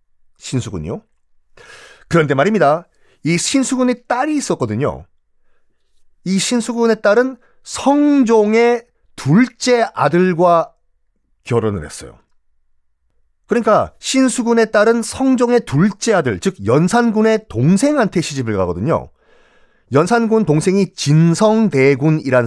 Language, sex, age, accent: Korean, male, 40-59, native